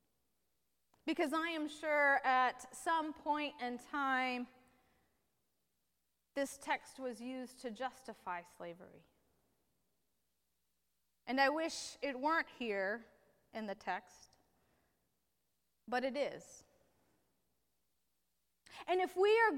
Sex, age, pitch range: female, 30-49, 220-345 Hz